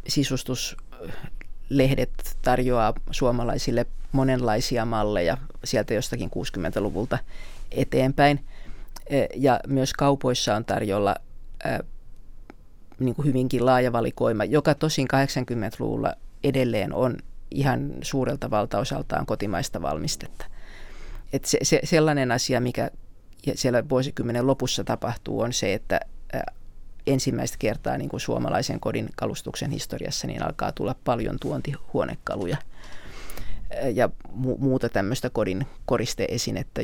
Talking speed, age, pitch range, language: 105 wpm, 30-49, 115-140 Hz, Finnish